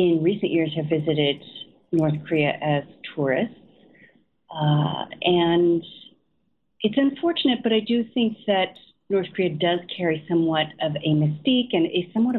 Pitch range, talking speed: 165-225 Hz, 140 wpm